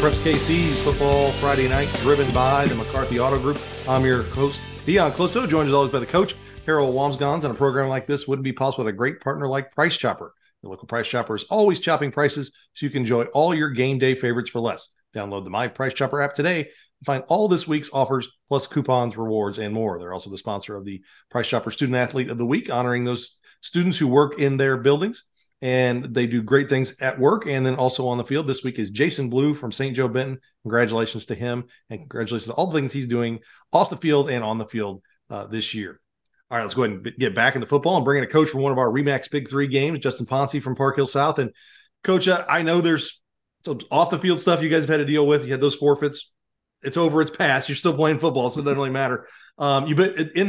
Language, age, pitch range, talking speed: English, 40-59, 125-145 Hz, 245 wpm